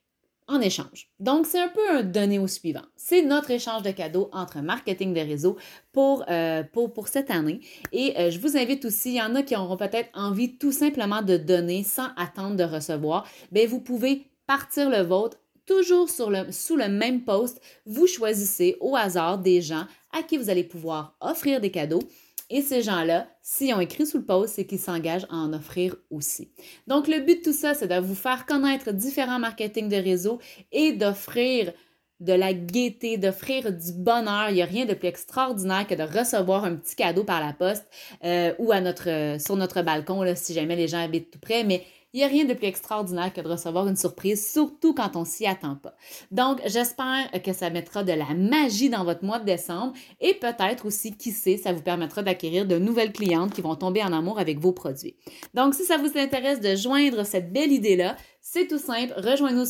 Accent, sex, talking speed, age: Canadian, female, 215 wpm, 30-49